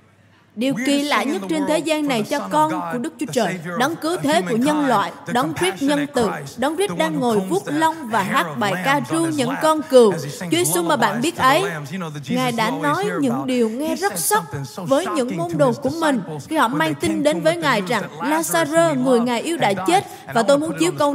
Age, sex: 20-39, female